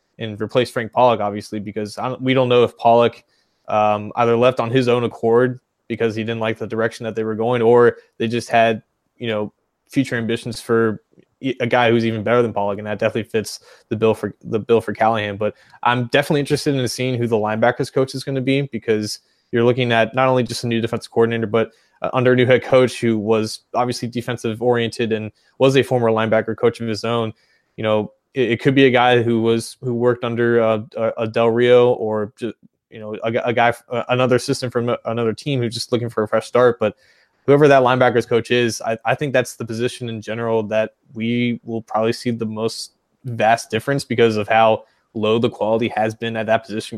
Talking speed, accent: 220 wpm, American